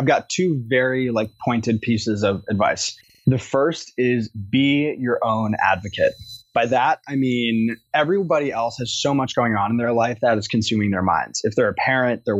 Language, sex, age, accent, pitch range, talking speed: English, male, 20-39, American, 110-130 Hz, 195 wpm